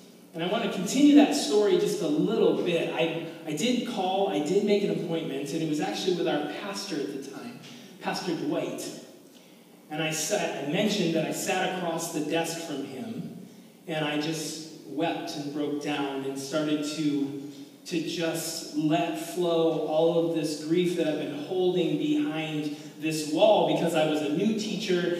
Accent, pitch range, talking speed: American, 155-200 Hz, 180 wpm